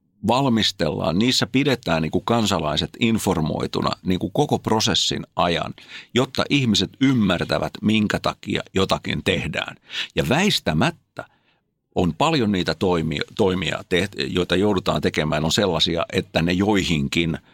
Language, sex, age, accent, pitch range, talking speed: Finnish, male, 60-79, native, 85-120 Hz, 100 wpm